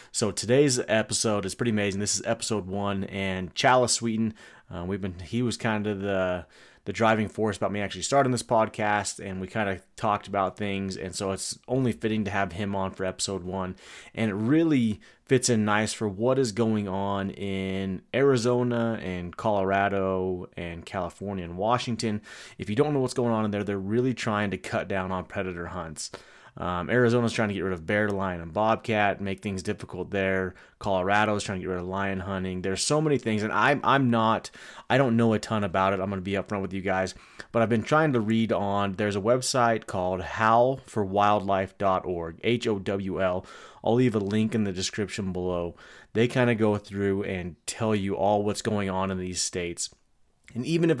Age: 30-49